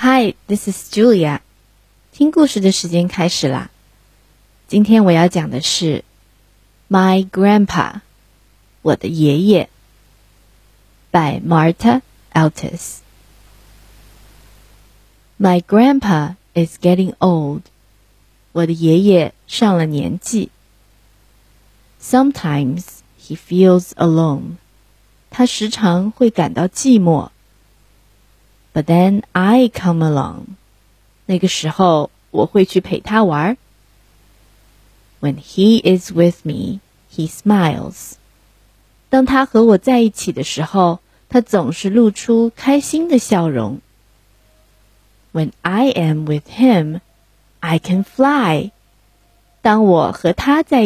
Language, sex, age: Chinese, female, 20-39